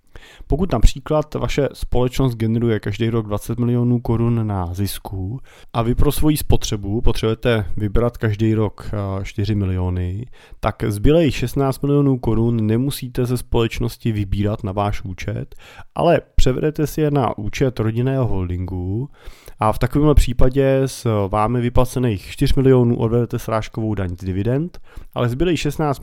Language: Czech